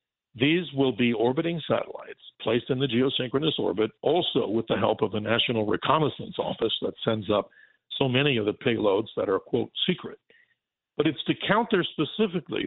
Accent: American